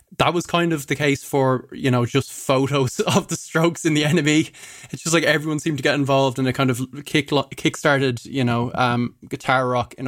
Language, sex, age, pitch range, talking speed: English, male, 20-39, 125-145 Hz, 220 wpm